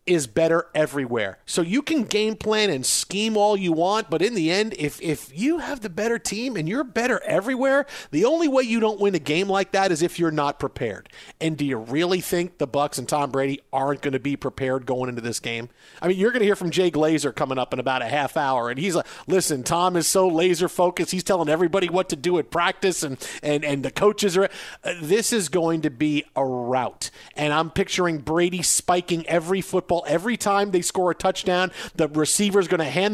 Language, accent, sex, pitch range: English, American, male, 150-200 Hz